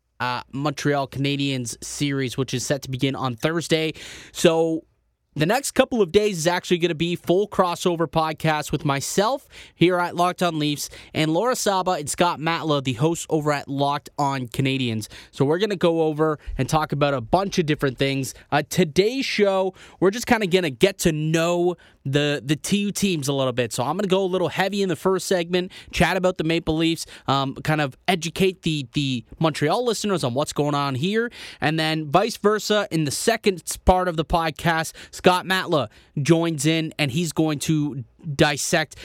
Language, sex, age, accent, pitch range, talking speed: English, male, 20-39, American, 145-180 Hz, 195 wpm